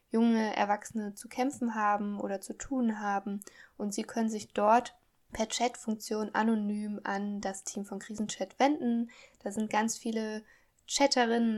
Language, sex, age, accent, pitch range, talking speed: German, female, 10-29, German, 200-230 Hz, 145 wpm